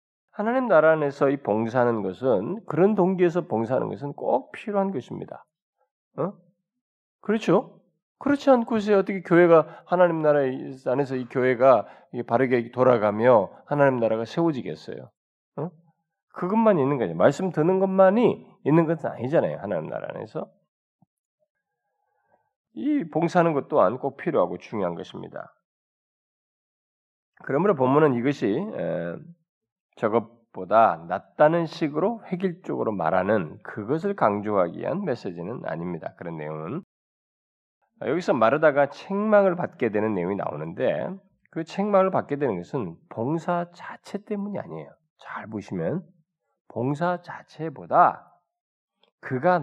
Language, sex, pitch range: Korean, male, 140-200 Hz